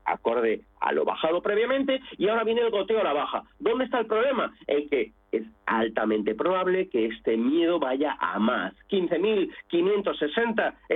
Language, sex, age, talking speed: Spanish, male, 40-59, 160 wpm